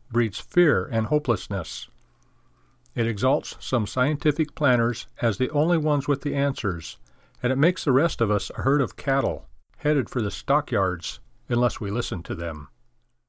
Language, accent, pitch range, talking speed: English, American, 105-140 Hz, 165 wpm